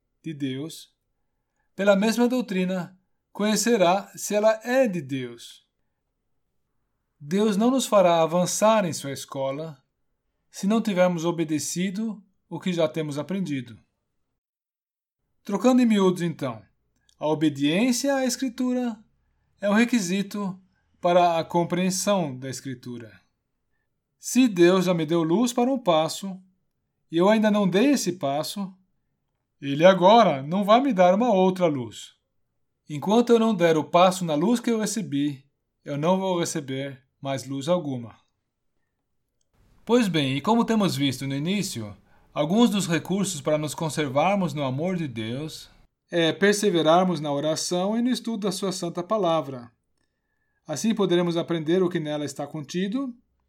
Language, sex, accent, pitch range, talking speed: Portuguese, male, Brazilian, 145-205 Hz, 140 wpm